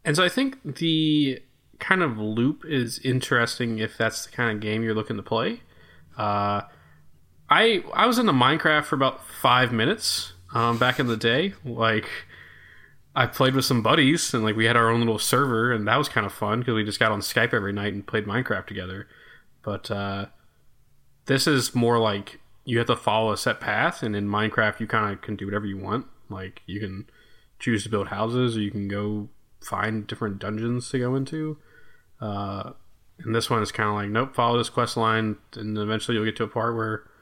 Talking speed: 210 wpm